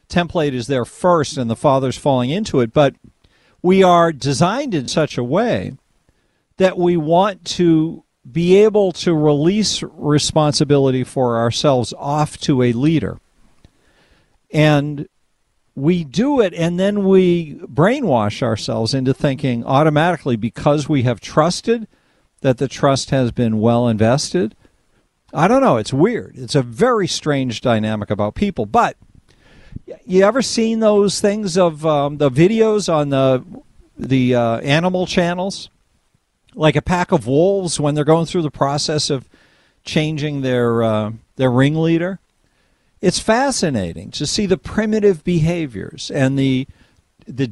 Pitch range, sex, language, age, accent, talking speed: 130-180 Hz, male, English, 50-69, American, 140 wpm